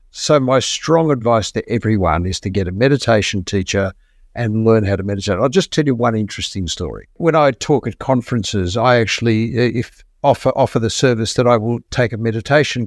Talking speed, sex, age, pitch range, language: 195 wpm, male, 60-79, 105-130 Hz, English